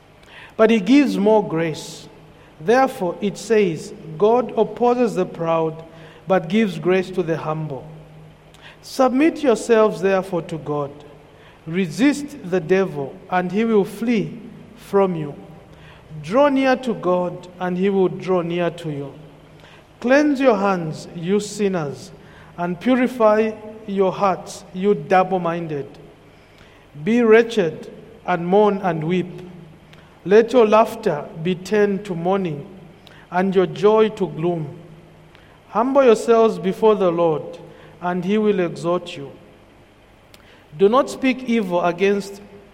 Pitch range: 160-215 Hz